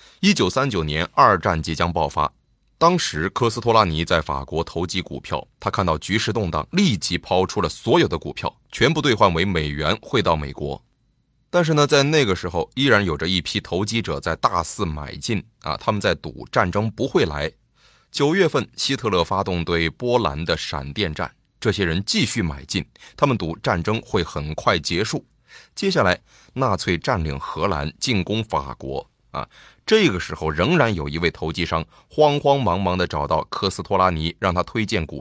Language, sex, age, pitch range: Chinese, male, 30-49, 80-115 Hz